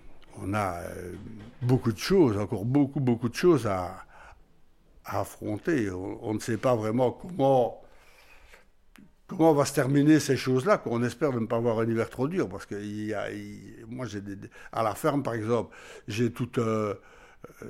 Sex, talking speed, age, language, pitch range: male, 185 wpm, 60-79, French, 110-140 Hz